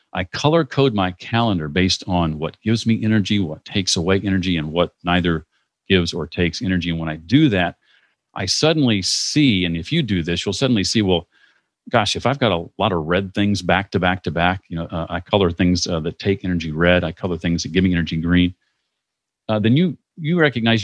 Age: 40-59